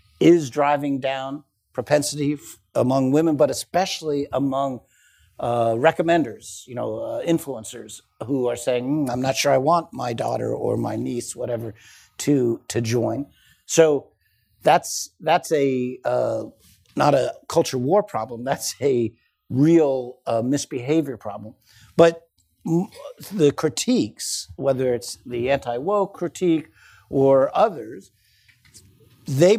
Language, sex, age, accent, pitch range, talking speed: English, male, 50-69, American, 120-155 Hz, 120 wpm